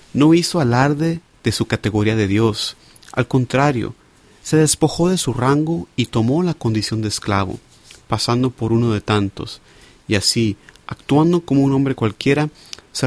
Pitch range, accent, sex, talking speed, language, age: 110-145 Hz, Venezuelan, male, 155 wpm, Spanish, 30-49